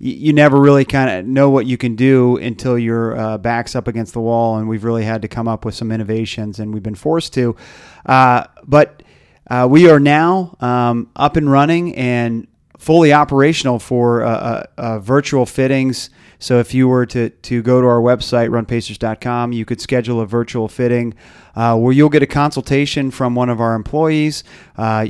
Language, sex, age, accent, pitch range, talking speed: English, male, 30-49, American, 110-135 Hz, 195 wpm